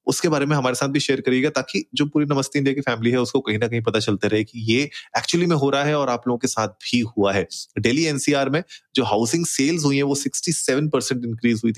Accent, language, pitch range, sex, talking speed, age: native, Hindi, 110-145 Hz, male, 215 wpm, 30-49